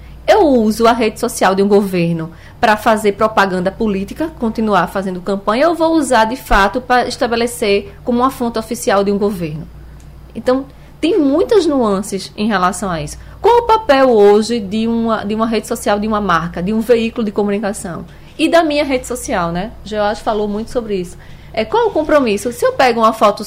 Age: 20-39